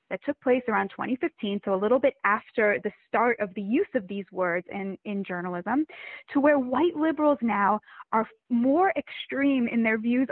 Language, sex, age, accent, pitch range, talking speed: English, female, 10-29, American, 205-275 Hz, 185 wpm